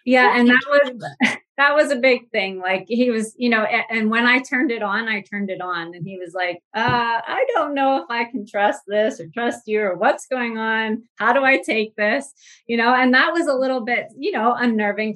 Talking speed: 240 wpm